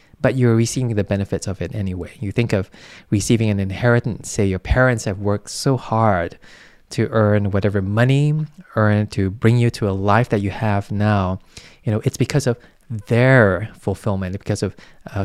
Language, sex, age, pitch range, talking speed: English, male, 20-39, 100-120 Hz, 175 wpm